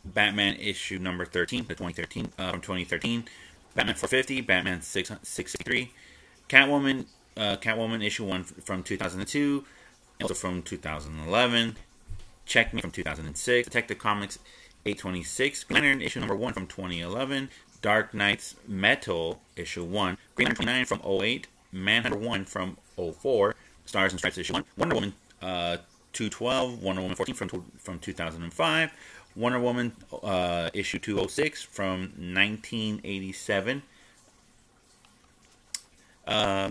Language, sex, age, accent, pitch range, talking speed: English, male, 30-49, American, 85-110 Hz, 120 wpm